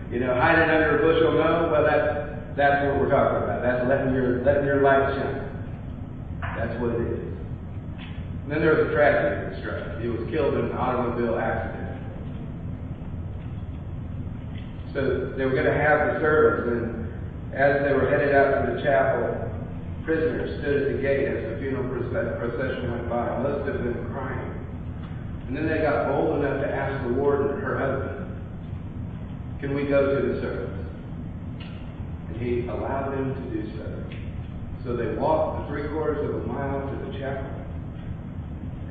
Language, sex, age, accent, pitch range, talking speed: English, male, 40-59, American, 95-140 Hz, 165 wpm